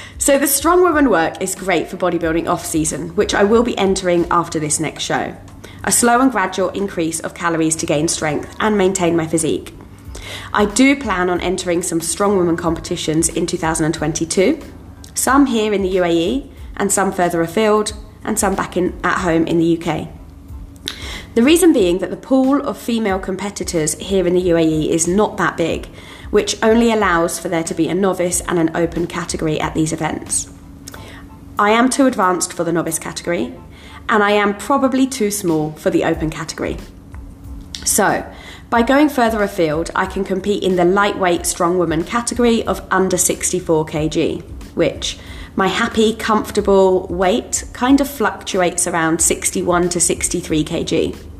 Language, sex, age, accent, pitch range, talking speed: English, female, 20-39, British, 160-205 Hz, 170 wpm